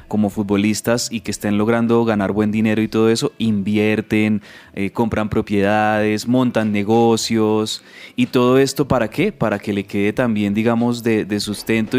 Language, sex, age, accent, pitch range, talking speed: Spanish, male, 20-39, Colombian, 105-125 Hz, 160 wpm